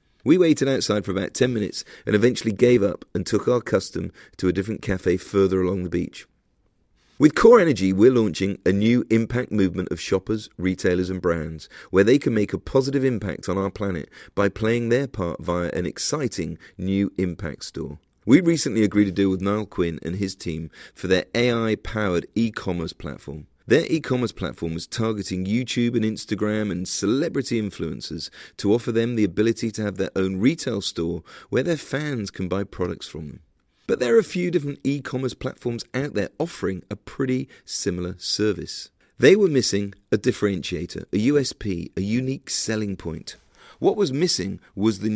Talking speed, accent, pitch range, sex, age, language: 180 wpm, British, 90-120 Hz, male, 40-59, English